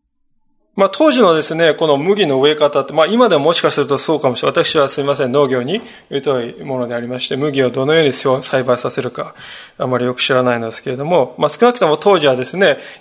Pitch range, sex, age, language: 135-195 Hz, male, 20-39, Japanese